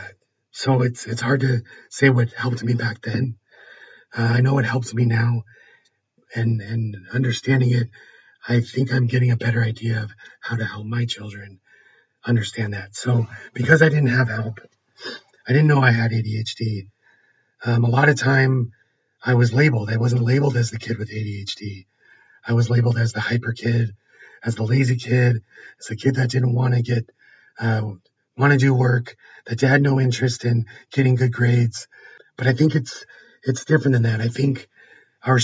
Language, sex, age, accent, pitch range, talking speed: English, male, 40-59, American, 115-130 Hz, 185 wpm